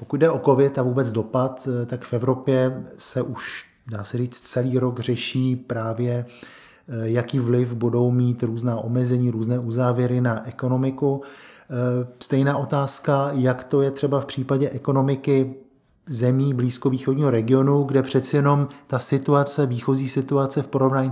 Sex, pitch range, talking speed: male, 120-135 Hz, 140 wpm